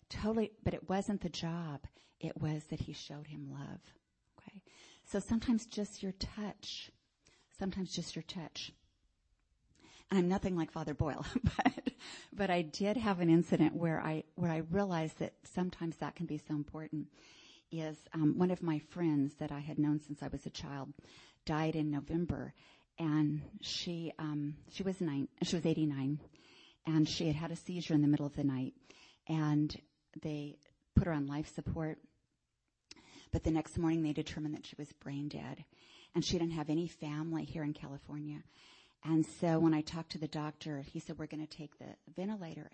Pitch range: 150-165 Hz